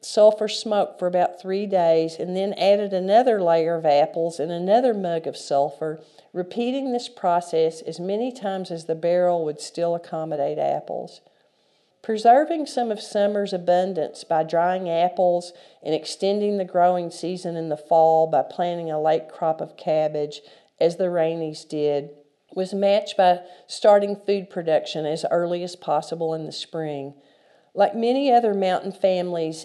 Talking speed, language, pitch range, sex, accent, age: 155 wpm, English, 165-200 Hz, female, American, 50-69